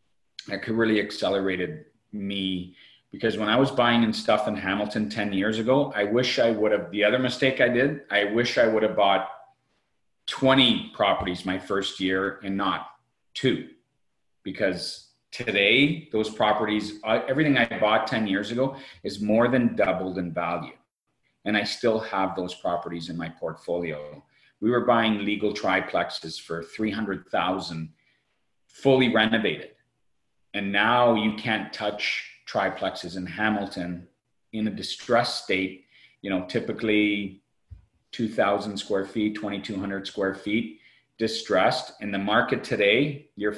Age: 40-59